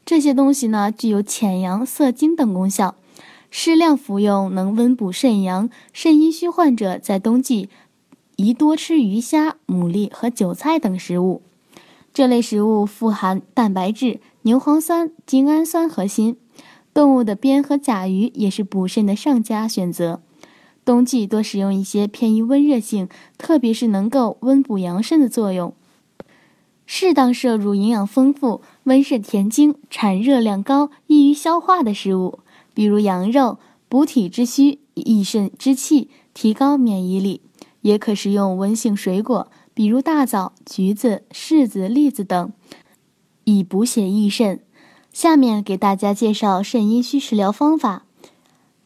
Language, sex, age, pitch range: Chinese, female, 10-29, 205-275 Hz